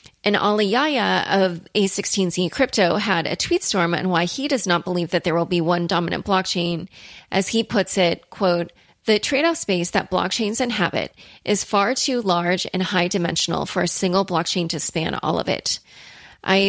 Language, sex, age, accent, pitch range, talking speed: English, female, 30-49, American, 175-205 Hz, 185 wpm